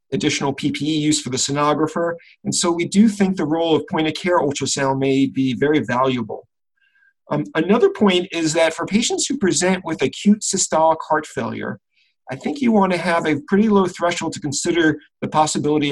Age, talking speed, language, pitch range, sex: 40-59, 185 wpm, English, 140-180 Hz, male